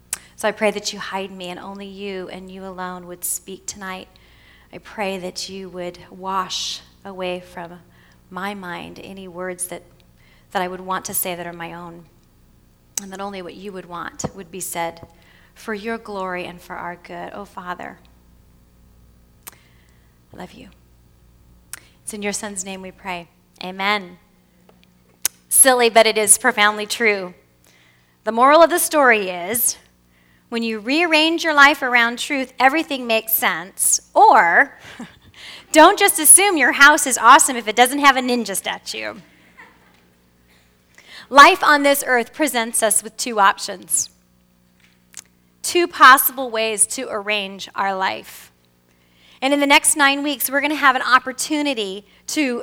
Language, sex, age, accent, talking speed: English, female, 30-49, American, 155 wpm